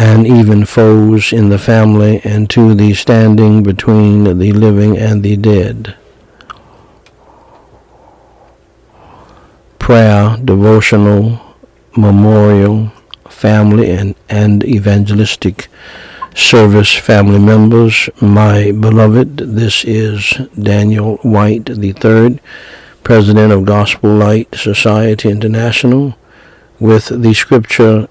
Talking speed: 90 wpm